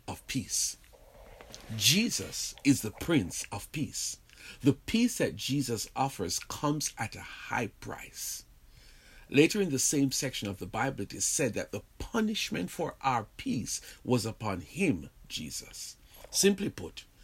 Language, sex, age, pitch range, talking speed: English, male, 50-69, 105-145 Hz, 140 wpm